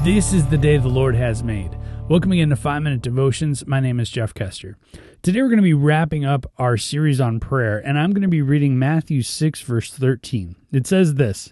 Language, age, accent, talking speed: English, 30-49, American, 220 wpm